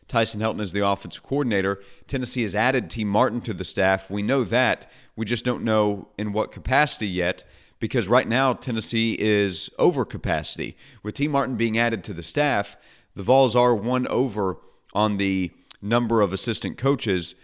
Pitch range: 100-125 Hz